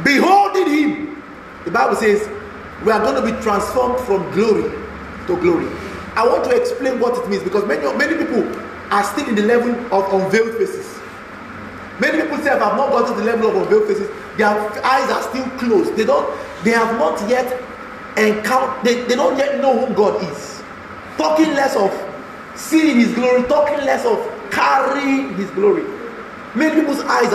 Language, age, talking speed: English, 40-59, 180 wpm